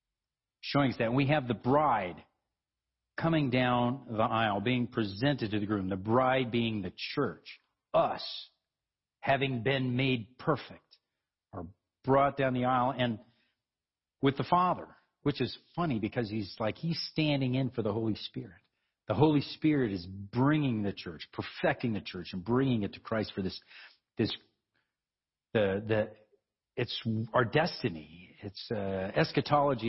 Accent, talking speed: American, 150 wpm